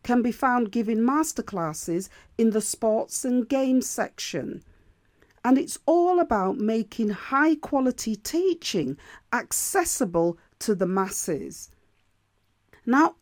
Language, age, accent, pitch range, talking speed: English, 40-59, British, 200-285 Hz, 110 wpm